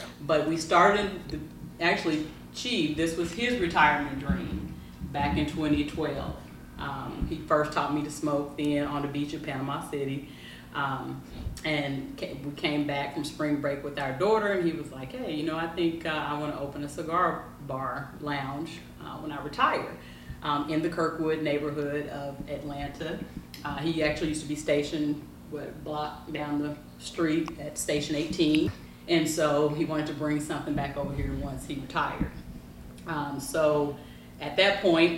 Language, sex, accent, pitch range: English, female, American, 140-155 Hz